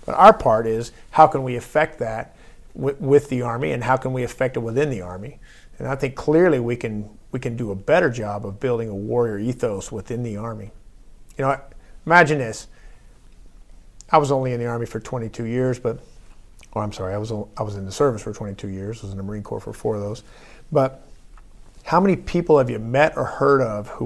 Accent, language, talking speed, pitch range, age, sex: American, English, 225 wpm, 110-135 Hz, 50-69, male